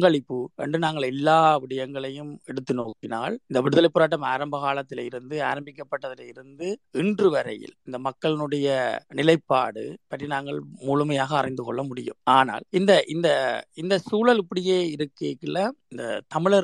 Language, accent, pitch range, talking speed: Tamil, native, 135-165 Hz, 60 wpm